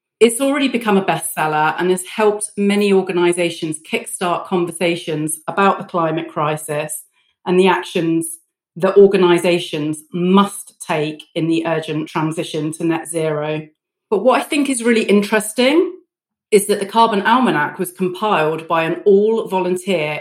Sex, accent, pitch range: female, British, 170-205 Hz